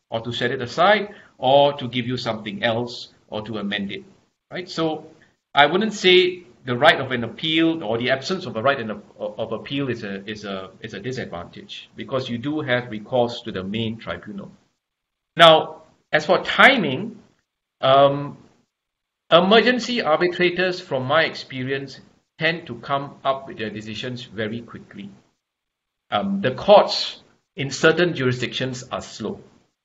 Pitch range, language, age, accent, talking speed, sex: 115-155 Hz, English, 50-69, Malaysian, 155 wpm, male